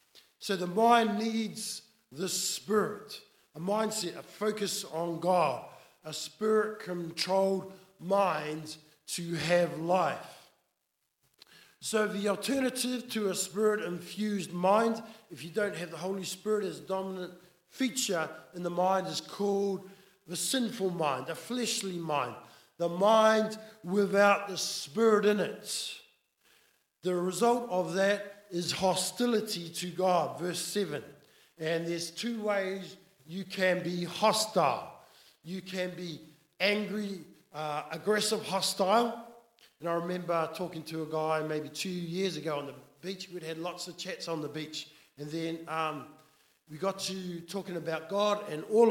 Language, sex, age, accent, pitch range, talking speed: English, male, 50-69, Australian, 165-205 Hz, 135 wpm